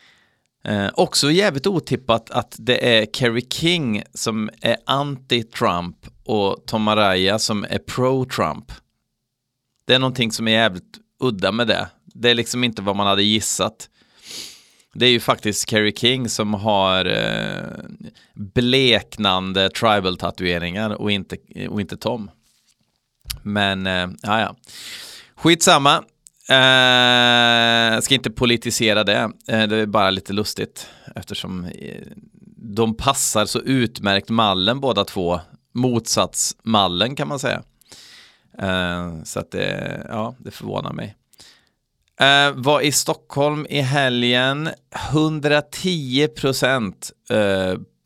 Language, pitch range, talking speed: Swedish, 100-130 Hz, 110 wpm